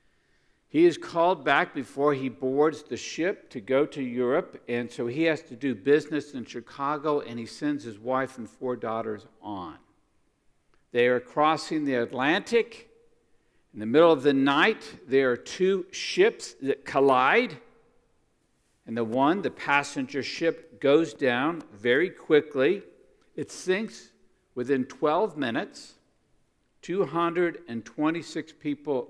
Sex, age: male, 50-69